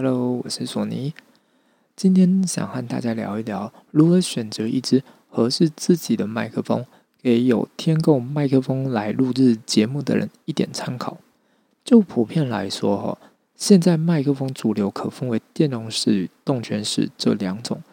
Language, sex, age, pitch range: Chinese, male, 20-39, 115-170 Hz